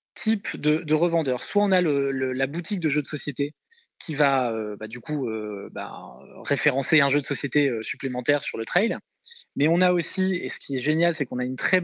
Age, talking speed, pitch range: 20-39, 235 wpm, 135-175 Hz